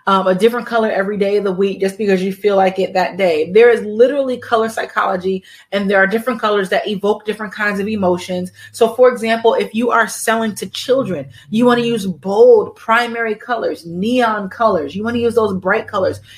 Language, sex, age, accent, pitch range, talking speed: English, female, 30-49, American, 190-235 Hz, 205 wpm